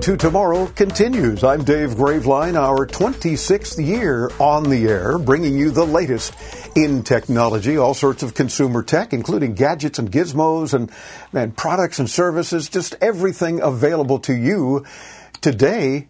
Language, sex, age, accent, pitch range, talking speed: English, male, 50-69, American, 125-160 Hz, 140 wpm